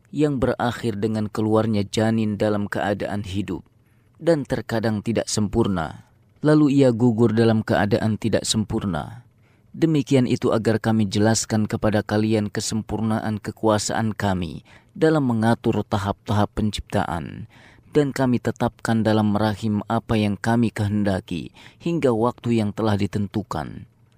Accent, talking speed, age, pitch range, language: native, 115 wpm, 30-49, 105-120 Hz, Indonesian